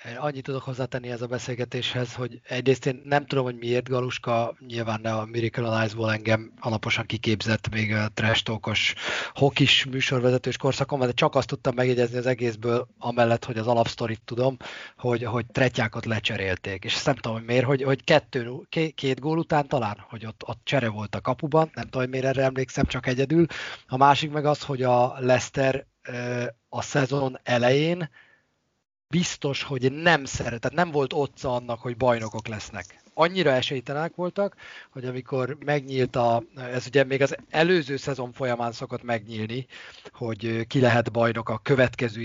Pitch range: 115-135 Hz